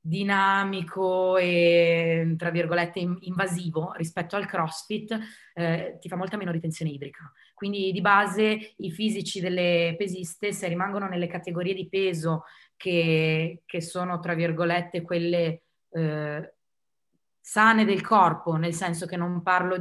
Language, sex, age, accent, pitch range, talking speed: Italian, female, 20-39, native, 170-200 Hz, 130 wpm